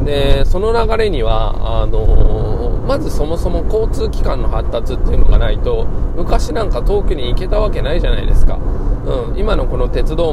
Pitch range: 100-120 Hz